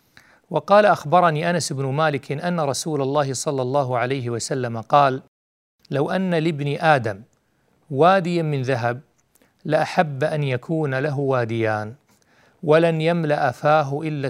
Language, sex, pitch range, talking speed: Arabic, male, 130-160 Hz, 120 wpm